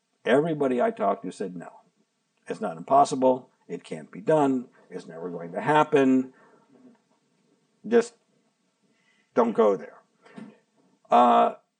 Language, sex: English, male